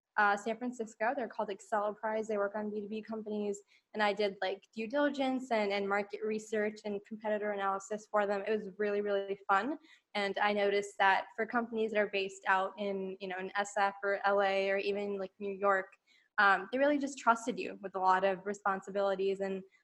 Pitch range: 195-220 Hz